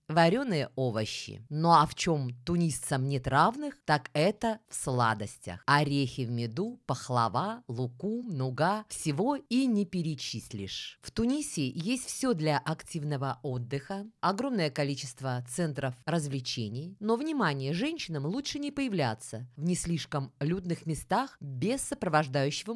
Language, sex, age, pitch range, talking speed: Russian, female, 20-39, 140-220 Hz, 125 wpm